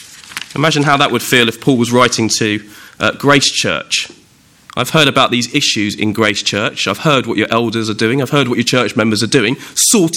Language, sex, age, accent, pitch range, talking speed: English, male, 20-39, British, 115-150 Hz, 220 wpm